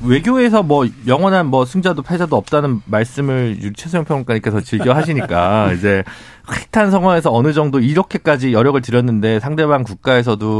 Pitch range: 115-165 Hz